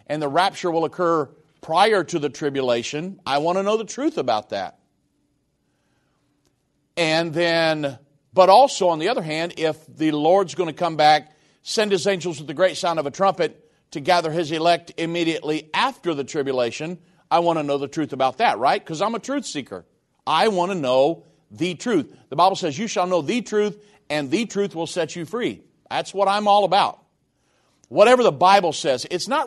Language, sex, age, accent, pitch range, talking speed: English, male, 50-69, American, 150-190 Hz, 195 wpm